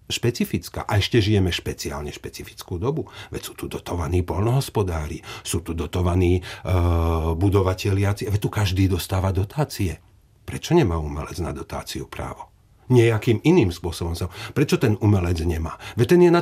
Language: Czech